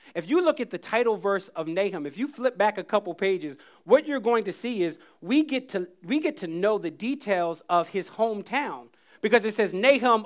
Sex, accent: male, American